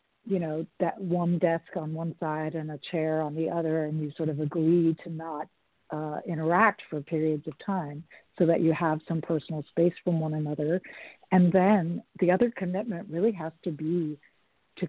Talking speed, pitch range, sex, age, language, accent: 190 wpm, 160-190 Hz, female, 50-69, English, American